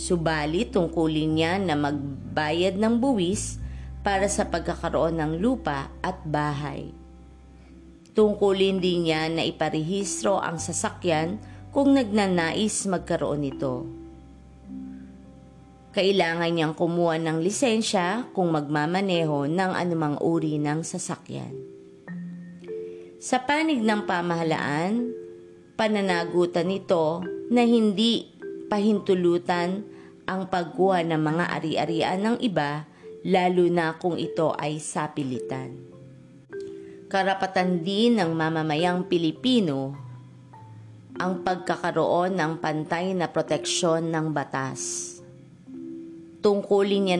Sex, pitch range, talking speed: female, 145-195 Hz, 95 wpm